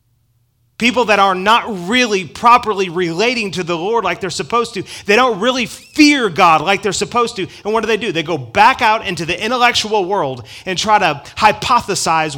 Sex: male